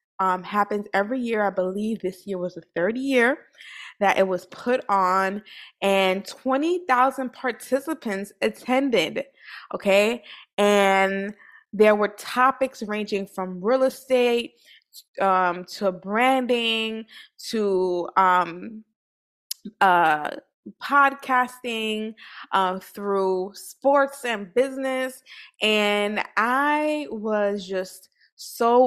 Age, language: 20-39, English